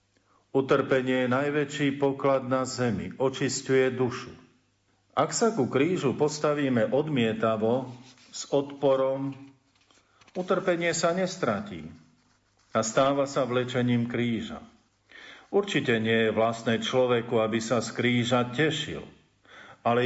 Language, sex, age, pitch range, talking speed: Slovak, male, 50-69, 115-140 Hz, 105 wpm